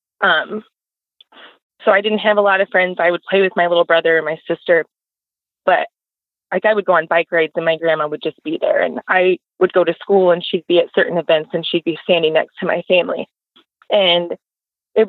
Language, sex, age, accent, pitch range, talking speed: English, female, 20-39, American, 170-210 Hz, 225 wpm